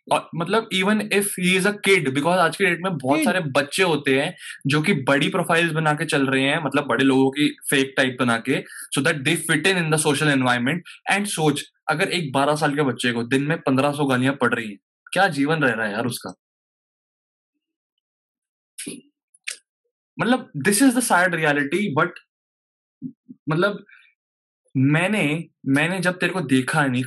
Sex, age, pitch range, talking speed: male, 20-39, 145-190 Hz, 170 wpm